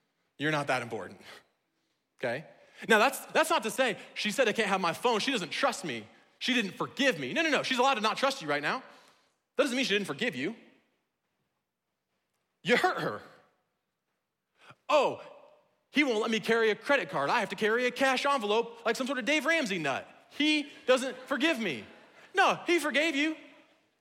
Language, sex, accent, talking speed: English, male, American, 195 wpm